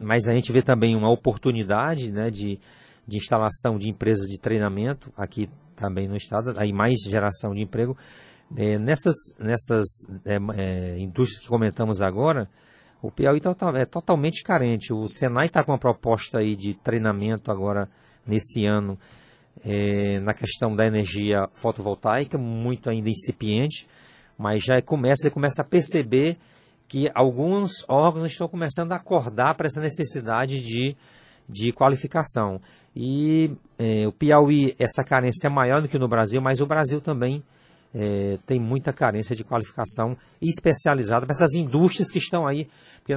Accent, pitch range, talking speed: Brazilian, 110-145 Hz, 145 wpm